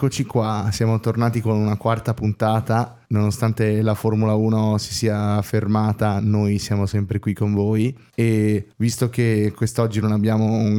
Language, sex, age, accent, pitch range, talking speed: Italian, male, 20-39, native, 105-115 Hz, 155 wpm